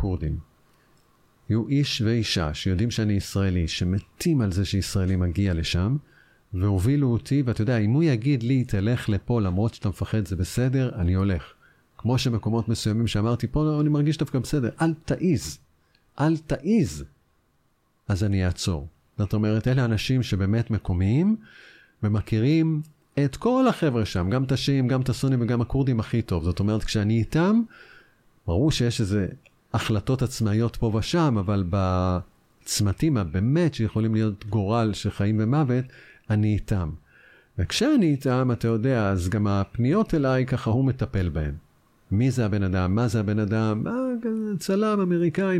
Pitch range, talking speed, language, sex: 100-140 Hz, 145 wpm, Hebrew, male